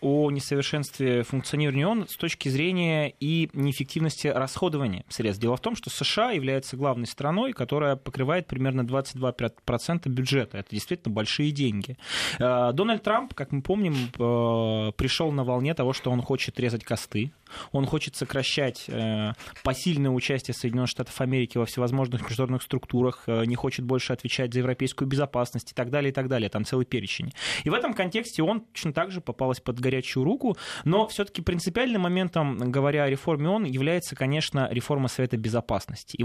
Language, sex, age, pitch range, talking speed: Russian, male, 20-39, 125-155 Hz, 160 wpm